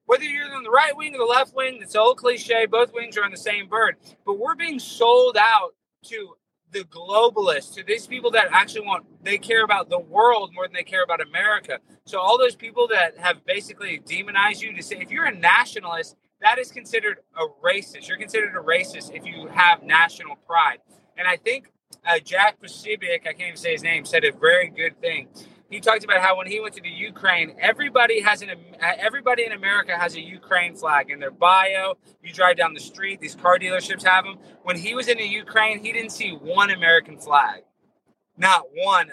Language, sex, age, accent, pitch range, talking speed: English, male, 30-49, American, 185-265 Hz, 210 wpm